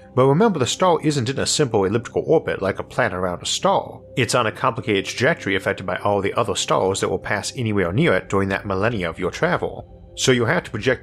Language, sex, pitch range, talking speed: English, male, 90-120 Hz, 240 wpm